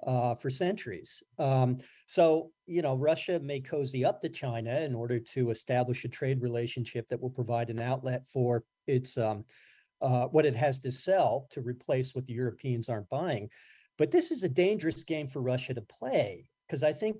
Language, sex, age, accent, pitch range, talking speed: English, male, 40-59, American, 125-160 Hz, 190 wpm